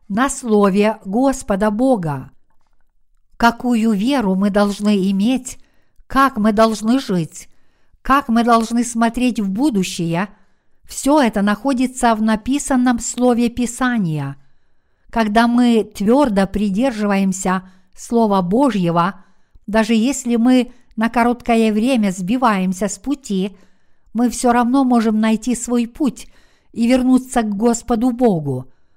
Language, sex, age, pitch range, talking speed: Russian, female, 50-69, 200-245 Hz, 110 wpm